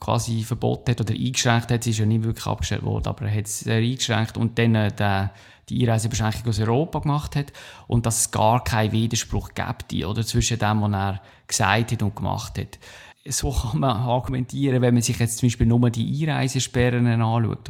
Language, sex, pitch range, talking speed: German, male, 115-130 Hz, 195 wpm